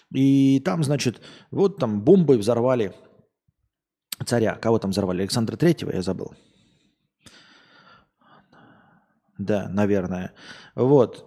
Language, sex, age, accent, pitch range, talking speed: Russian, male, 20-39, native, 115-160 Hz, 95 wpm